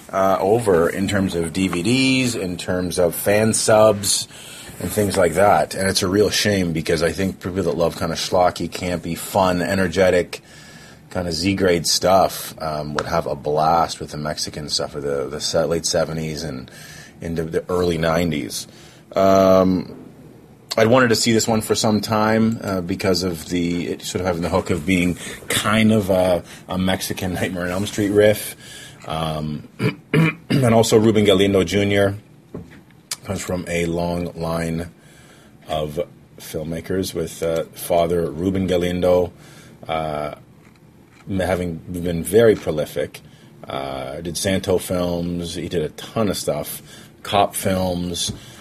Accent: American